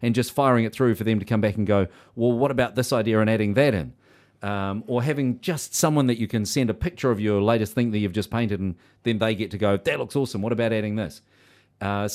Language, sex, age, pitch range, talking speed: English, male, 40-59, 100-125 Hz, 265 wpm